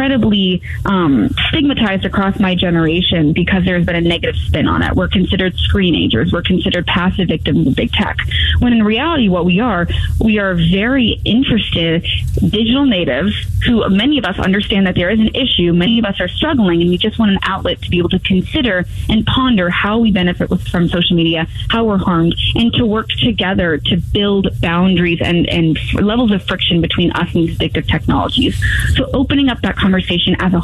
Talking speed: 195 wpm